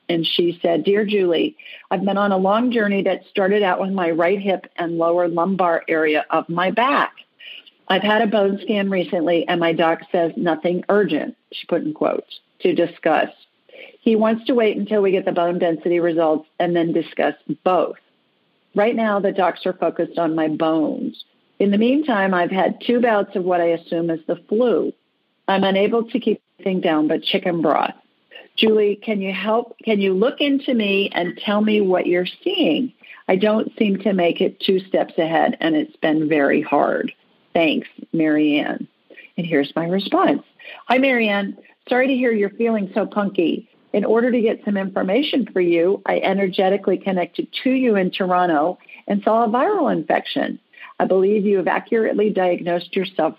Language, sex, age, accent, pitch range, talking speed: English, female, 50-69, American, 175-220 Hz, 180 wpm